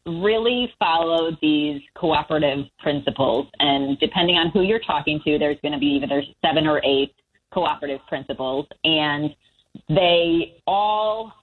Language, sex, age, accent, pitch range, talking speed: English, female, 30-49, American, 145-175 Hz, 130 wpm